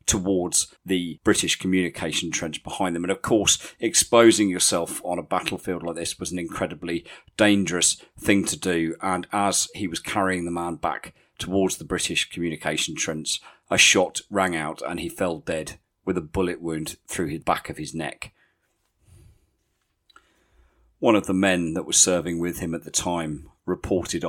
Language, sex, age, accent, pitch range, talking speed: English, male, 40-59, British, 80-95 Hz, 170 wpm